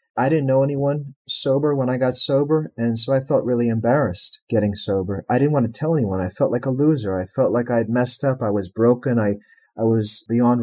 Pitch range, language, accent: 105-130 Hz, English, American